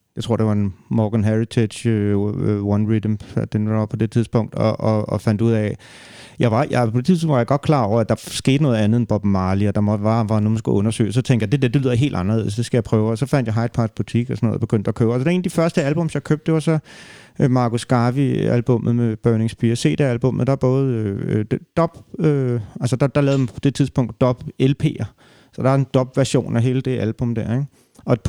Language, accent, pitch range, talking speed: Danish, native, 115-145 Hz, 265 wpm